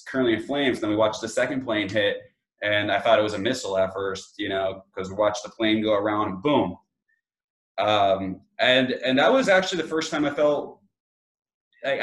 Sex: male